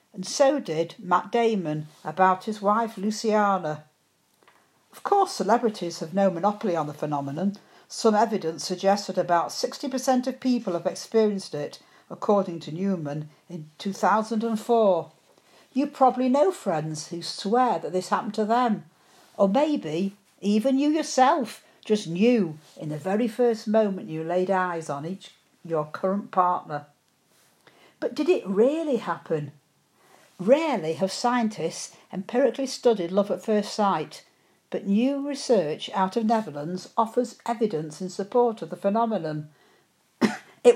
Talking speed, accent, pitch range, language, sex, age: 135 wpm, British, 165-230 Hz, English, female, 60-79